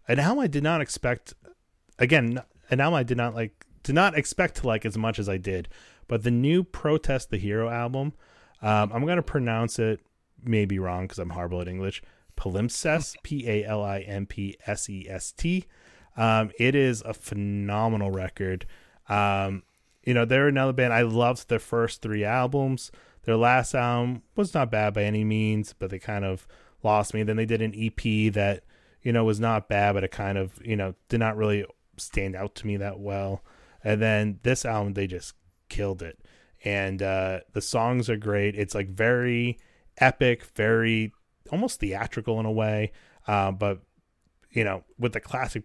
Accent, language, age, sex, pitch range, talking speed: American, English, 30-49, male, 100-120 Hz, 190 wpm